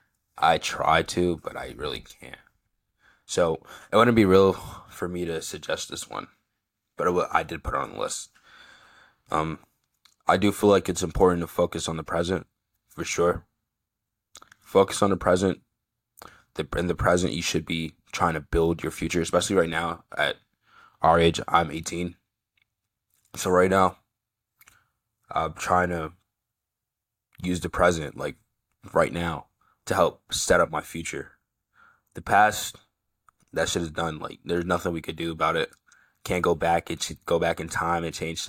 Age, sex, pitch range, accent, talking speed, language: 20-39, male, 80-90 Hz, American, 170 wpm, English